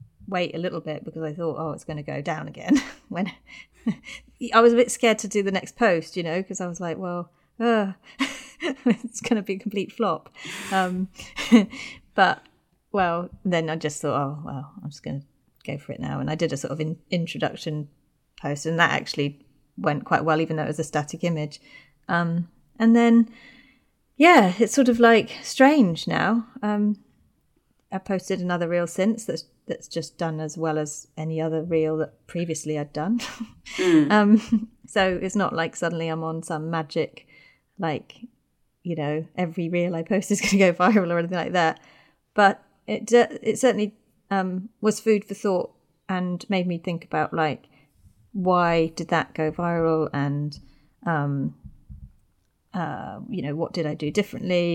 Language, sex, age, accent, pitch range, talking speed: English, female, 30-49, British, 160-210 Hz, 180 wpm